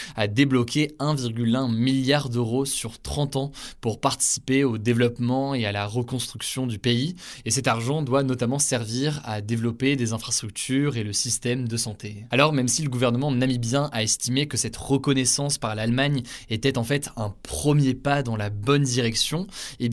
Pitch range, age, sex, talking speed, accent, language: 120-145 Hz, 20-39, male, 170 wpm, French, French